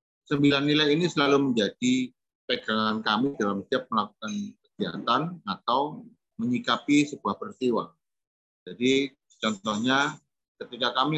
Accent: native